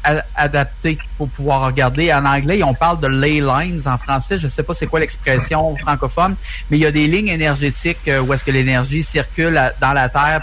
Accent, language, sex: Canadian, French, male